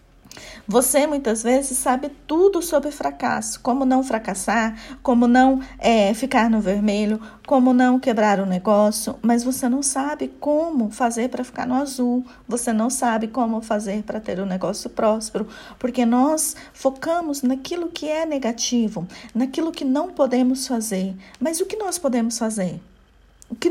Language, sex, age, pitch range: Portuguese, female, 40-59, 215-275 Hz